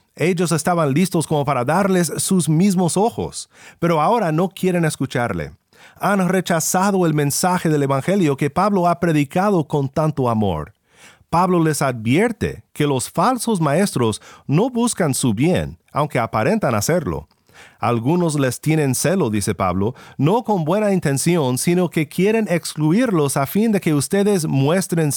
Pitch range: 130-180 Hz